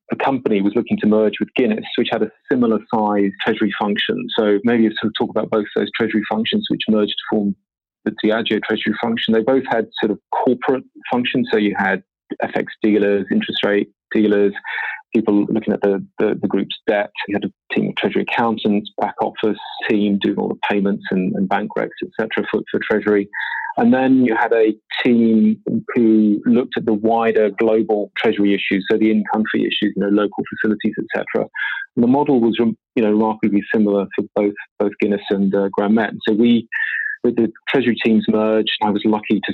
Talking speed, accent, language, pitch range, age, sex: 195 wpm, British, English, 105-115 Hz, 30-49, male